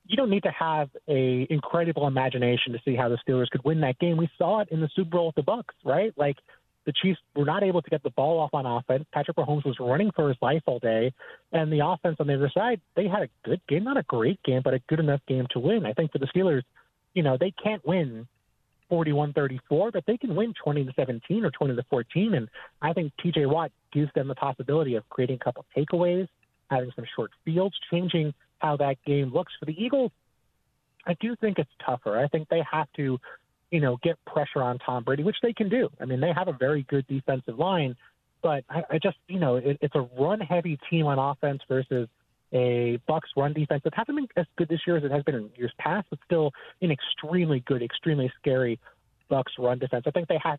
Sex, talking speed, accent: male, 230 wpm, American